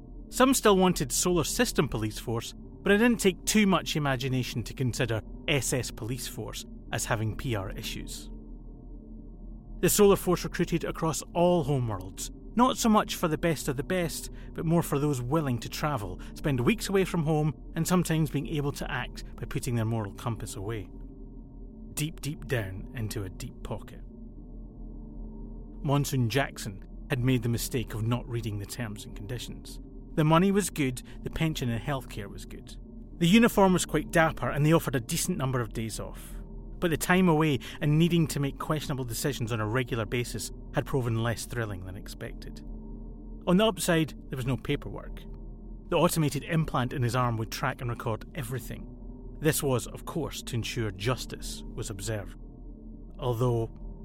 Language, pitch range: English, 115-155 Hz